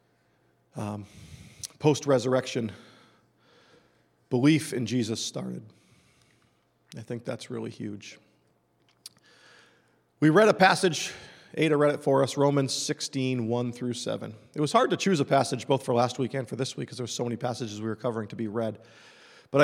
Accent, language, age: American, English, 40-59